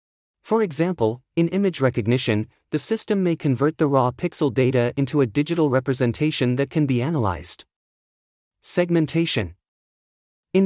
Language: English